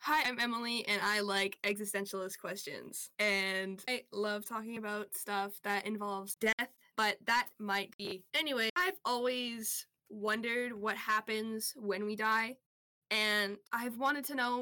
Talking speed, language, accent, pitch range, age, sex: 145 wpm, English, American, 205-245 Hz, 10-29, female